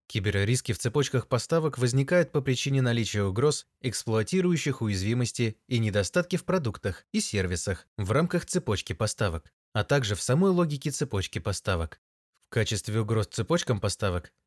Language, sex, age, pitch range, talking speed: Russian, male, 20-39, 105-135 Hz, 135 wpm